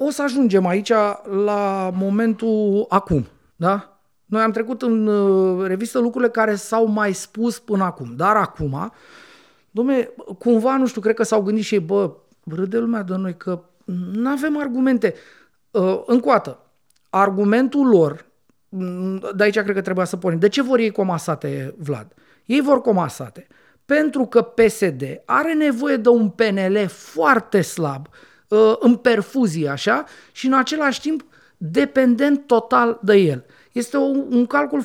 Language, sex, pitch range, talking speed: Romanian, male, 185-245 Hz, 145 wpm